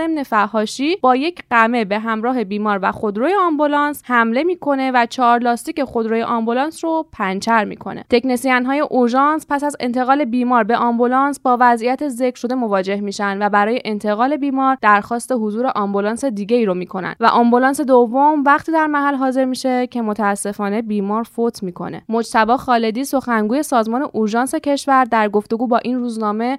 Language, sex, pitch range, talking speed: Persian, female, 230-285 Hz, 155 wpm